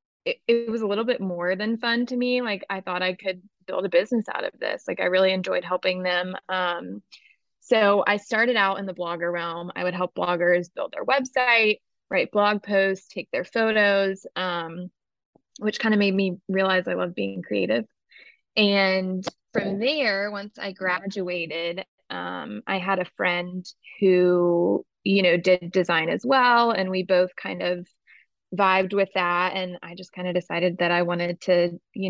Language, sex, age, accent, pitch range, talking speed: English, female, 20-39, American, 180-205 Hz, 185 wpm